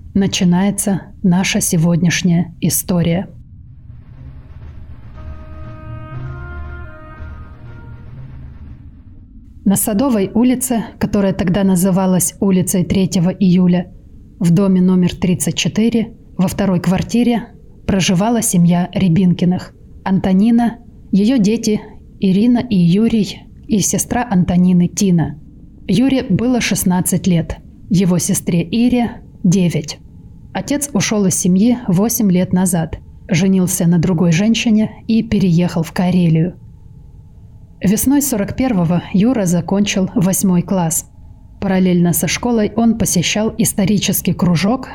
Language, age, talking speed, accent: Russian, 30-49, 95 wpm, native